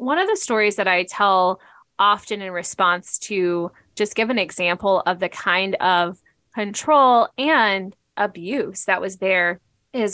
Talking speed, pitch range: 155 wpm, 180-225 Hz